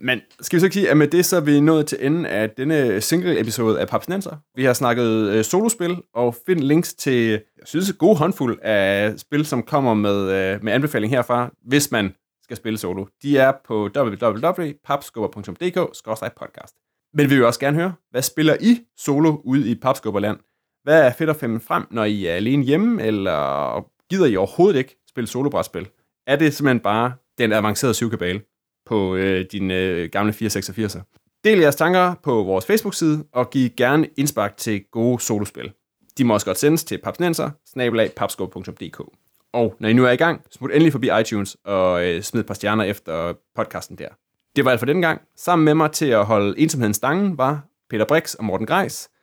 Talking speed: 190 wpm